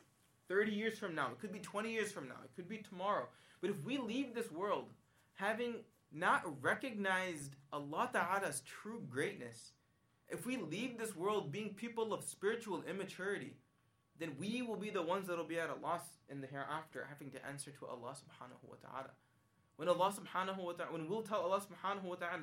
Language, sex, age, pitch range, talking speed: English, male, 20-39, 165-220 Hz, 195 wpm